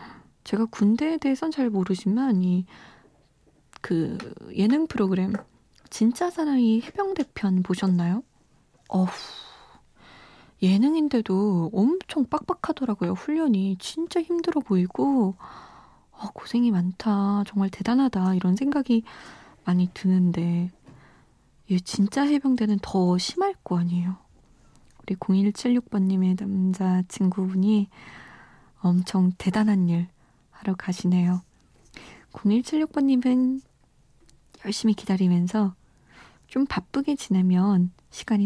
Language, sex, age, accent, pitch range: Korean, female, 20-39, native, 185-255 Hz